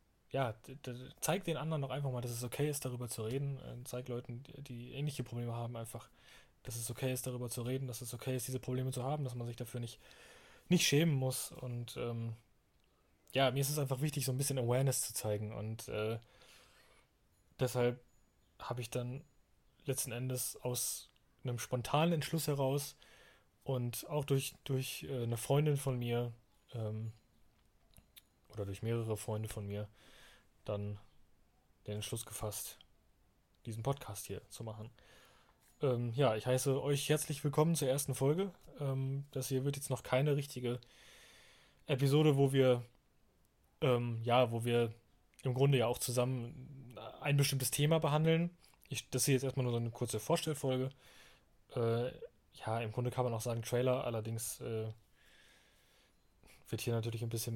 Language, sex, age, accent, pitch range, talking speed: German, male, 20-39, German, 115-135 Hz, 165 wpm